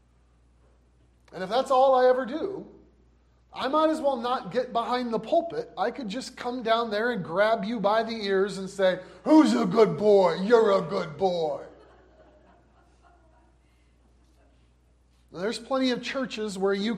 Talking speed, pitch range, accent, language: 155 wpm, 190-250 Hz, American, English